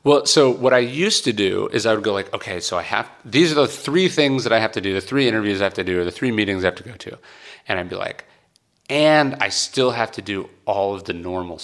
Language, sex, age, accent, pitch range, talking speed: English, male, 30-49, American, 95-130 Hz, 290 wpm